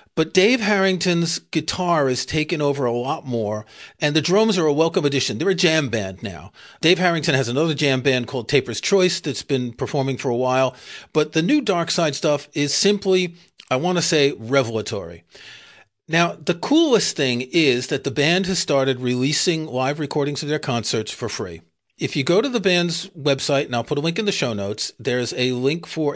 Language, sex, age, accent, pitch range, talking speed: English, male, 40-59, American, 130-175 Hz, 200 wpm